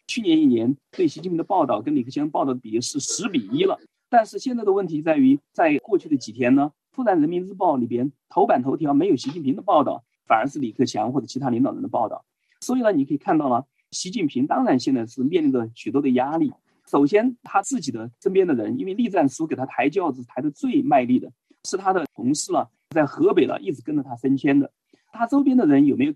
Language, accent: Chinese, native